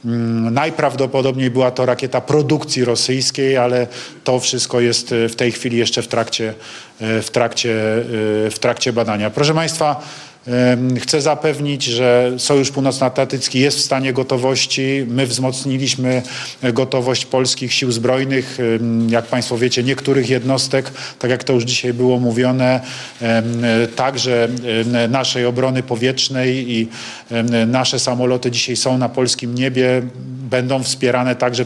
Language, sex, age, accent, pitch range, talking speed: Polish, male, 40-59, native, 120-135 Hz, 125 wpm